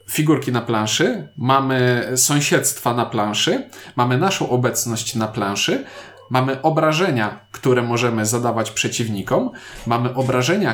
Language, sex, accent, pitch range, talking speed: Polish, male, native, 120-165 Hz, 110 wpm